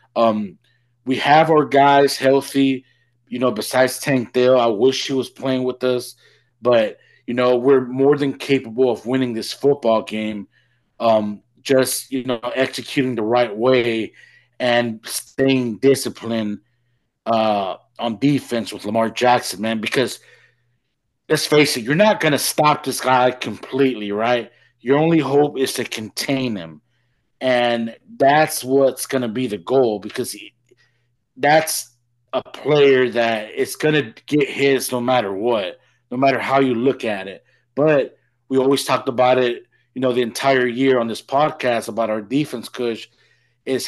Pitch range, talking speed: 115-135 Hz, 155 wpm